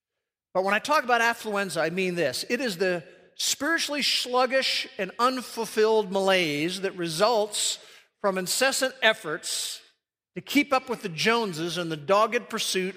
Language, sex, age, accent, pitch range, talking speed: English, male, 50-69, American, 160-225 Hz, 150 wpm